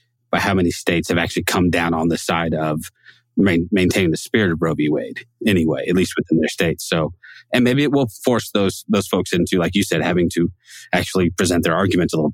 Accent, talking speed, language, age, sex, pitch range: American, 230 wpm, English, 30-49, male, 90-120 Hz